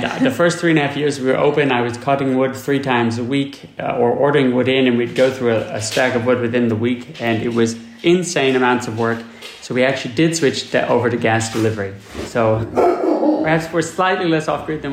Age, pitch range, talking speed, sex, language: 30-49, 115-140 Hz, 240 wpm, male, English